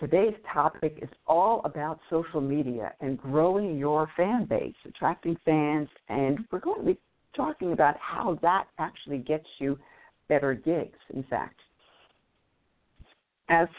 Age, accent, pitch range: 60-79, American, 135-180 Hz